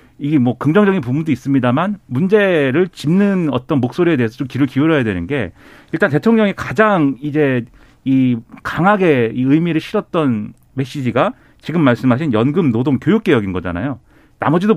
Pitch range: 120-165 Hz